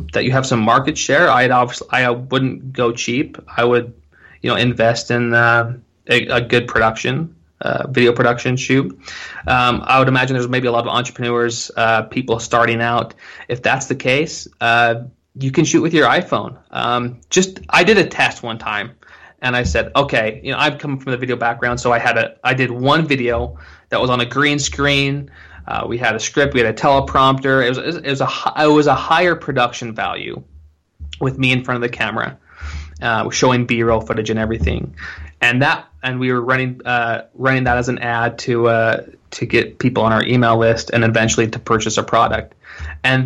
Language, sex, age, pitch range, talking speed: English, male, 20-39, 115-135 Hz, 205 wpm